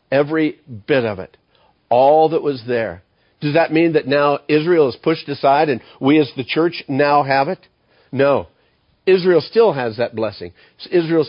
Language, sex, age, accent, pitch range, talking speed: English, male, 50-69, American, 125-150 Hz, 170 wpm